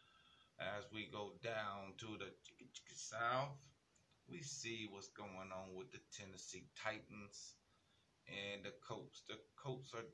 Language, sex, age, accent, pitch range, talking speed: English, male, 30-49, American, 100-125 Hz, 130 wpm